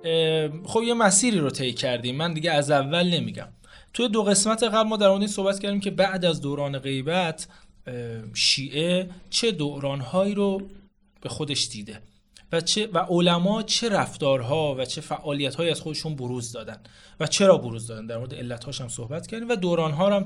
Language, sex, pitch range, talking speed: Persian, male, 135-195 Hz, 180 wpm